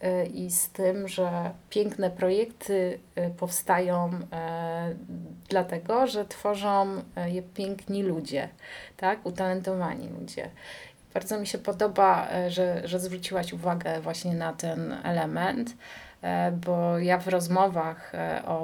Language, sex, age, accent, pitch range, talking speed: Polish, female, 30-49, native, 165-190 Hz, 105 wpm